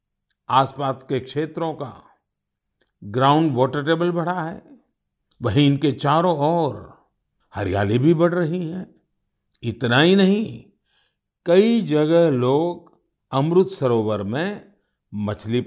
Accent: native